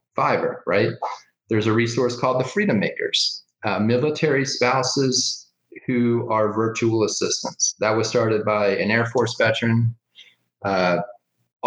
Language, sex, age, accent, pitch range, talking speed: English, male, 30-49, American, 110-130 Hz, 130 wpm